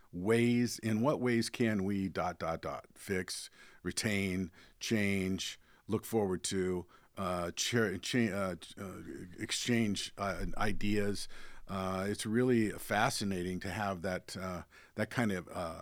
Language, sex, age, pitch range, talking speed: English, male, 50-69, 90-105 Hz, 135 wpm